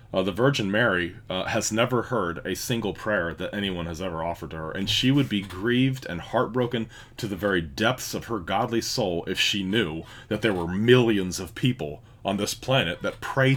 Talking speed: 210 wpm